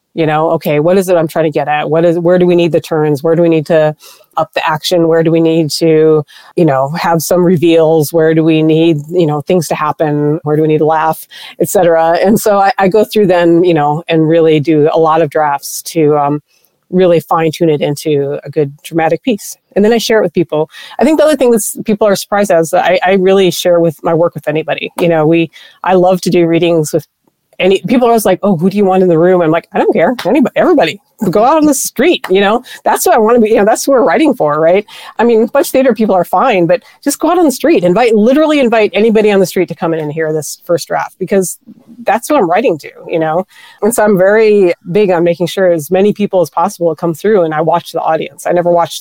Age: 30-49